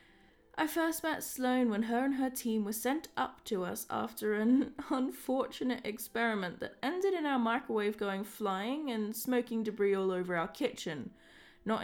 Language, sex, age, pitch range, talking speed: English, female, 10-29, 200-275 Hz, 165 wpm